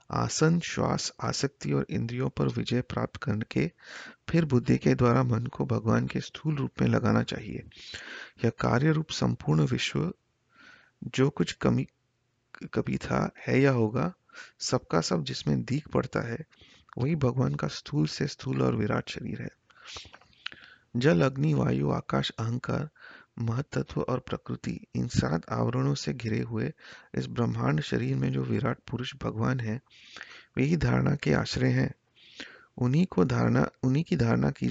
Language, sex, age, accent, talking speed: Hindi, male, 30-49, native, 145 wpm